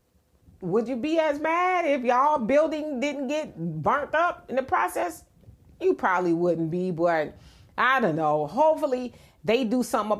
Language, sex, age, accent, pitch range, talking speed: English, female, 30-49, American, 185-275 Hz, 160 wpm